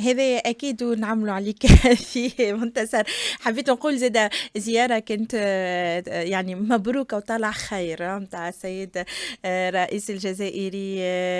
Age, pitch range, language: 20-39, 190-230 Hz, Arabic